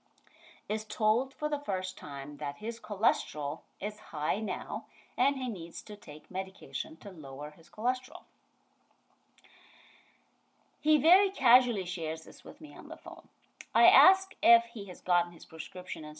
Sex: female